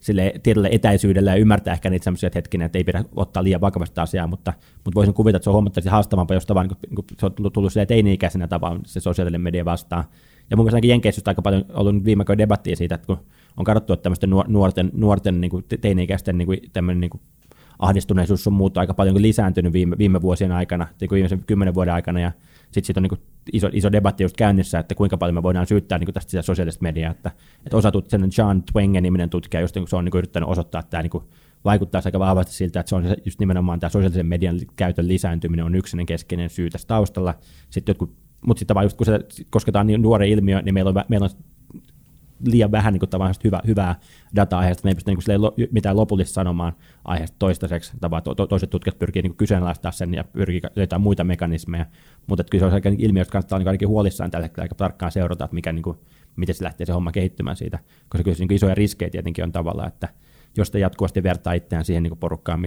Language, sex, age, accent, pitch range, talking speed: Finnish, male, 20-39, native, 90-100 Hz, 220 wpm